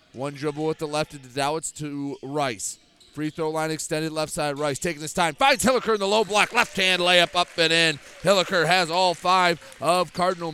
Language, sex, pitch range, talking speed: English, male, 150-185 Hz, 215 wpm